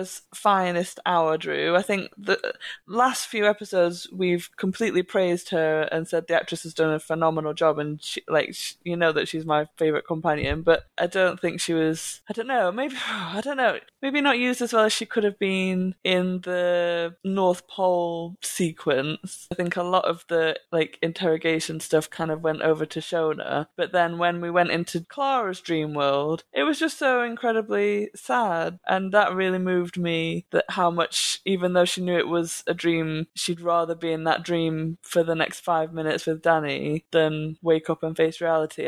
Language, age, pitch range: English, 20-39, 160-200 Hz